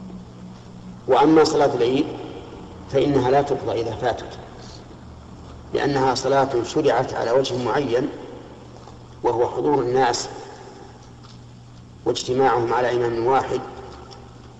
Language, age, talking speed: Arabic, 50-69, 85 wpm